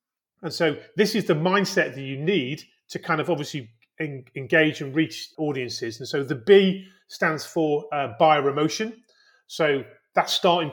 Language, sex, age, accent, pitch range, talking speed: English, male, 30-49, British, 145-180 Hz, 160 wpm